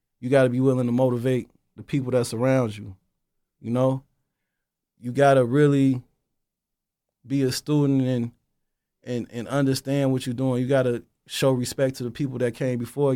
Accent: American